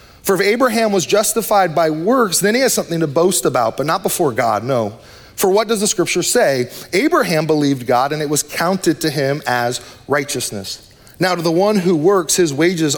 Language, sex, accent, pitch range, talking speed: English, male, American, 140-190 Hz, 205 wpm